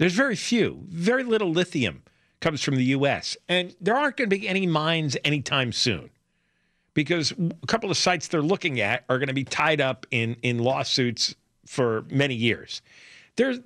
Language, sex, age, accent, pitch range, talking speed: English, male, 50-69, American, 115-180 Hz, 180 wpm